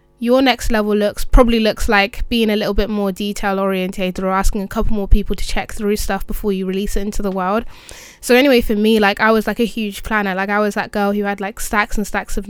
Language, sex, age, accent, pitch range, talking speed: English, female, 20-39, British, 195-220 Hz, 260 wpm